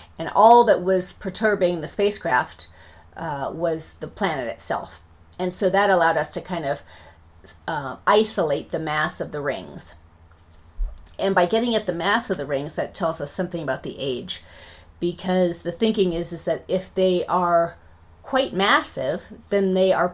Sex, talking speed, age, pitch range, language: female, 170 wpm, 30-49, 125-190 Hz, English